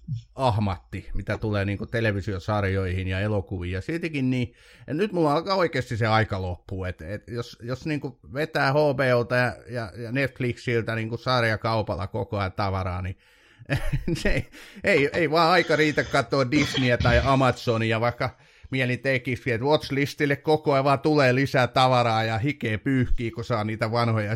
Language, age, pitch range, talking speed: Finnish, 30-49, 105-140 Hz, 155 wpm